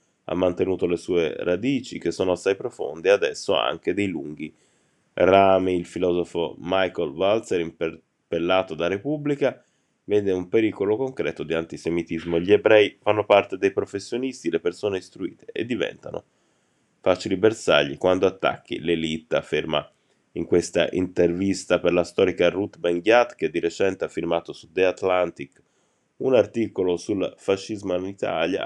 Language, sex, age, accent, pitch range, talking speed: Italian, male, 20-39, native, 90-130 Hz, 140 wpm